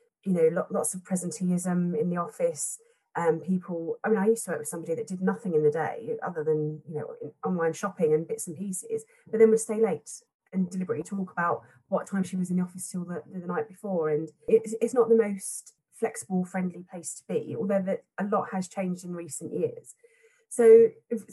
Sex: female